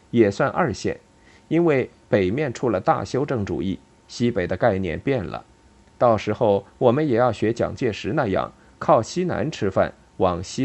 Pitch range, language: 100-130 Hz, Chinese